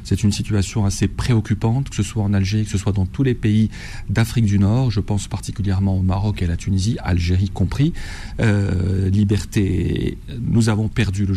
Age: 40-59